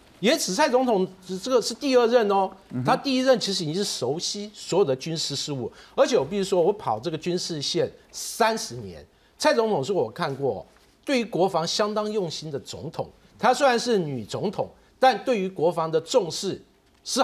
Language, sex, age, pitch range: Chinese, male, 50-69, 145-235 Hz